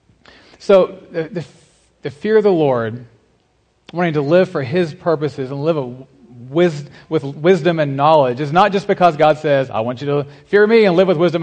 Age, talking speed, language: 40-59, 200 wpm, English